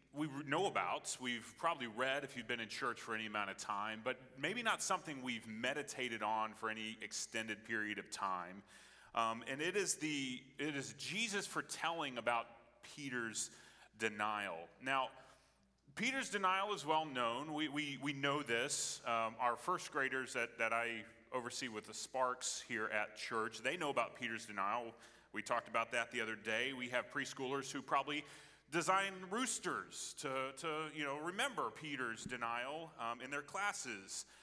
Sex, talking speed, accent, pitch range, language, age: male, 170 wpm, American, 115-165 Hz, English, 30-49